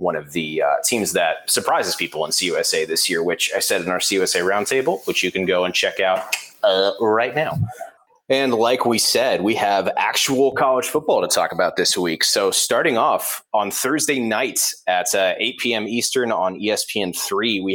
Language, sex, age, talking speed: English, male, 30-49, 195 wpm